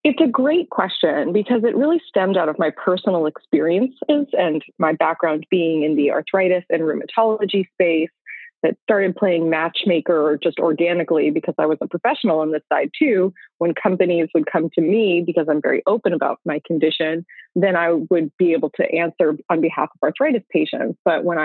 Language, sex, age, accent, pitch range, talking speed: English, female, 20-39, American, 165-215 Hz, 180 wpm